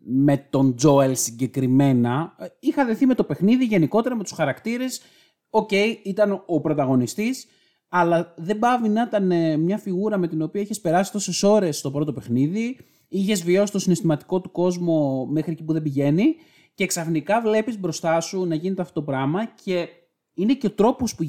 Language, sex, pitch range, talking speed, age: Greek, male, 140-195 Hz, 175 wpm, 30-49